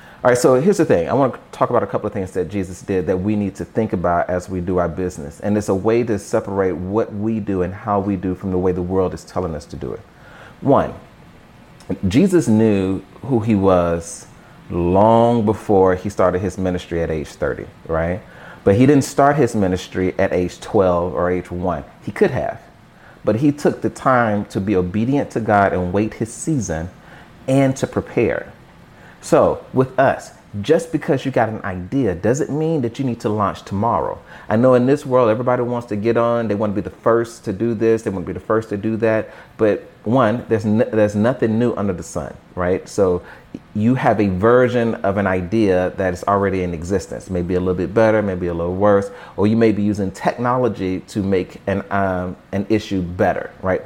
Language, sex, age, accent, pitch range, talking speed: English, male, 30-49, American, 95-115 Hz, 215 wpm